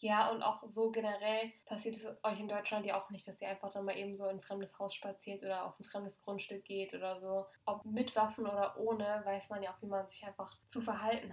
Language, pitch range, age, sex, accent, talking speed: German, 200-225 Hz, 10-29, female, German, 255 wpm